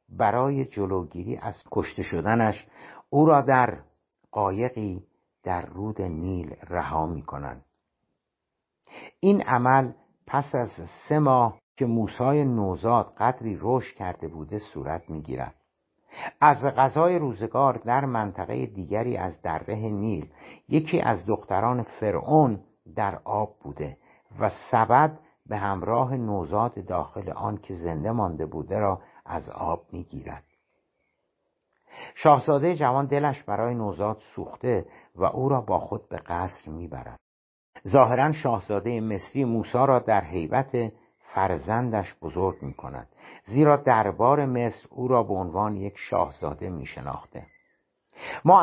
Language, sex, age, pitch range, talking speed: Persian, male, 60-79, 95-130 Hz, 120 wpm